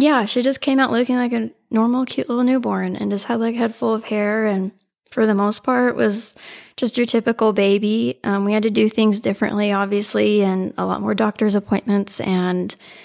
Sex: female